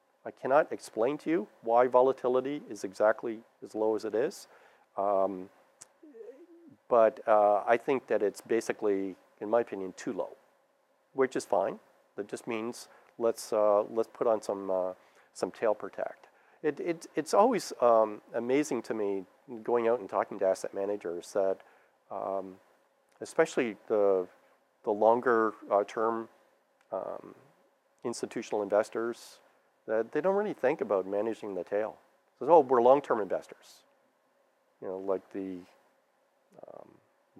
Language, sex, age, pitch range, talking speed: English, male, 40-59, 95-125 Hz, 140 wpm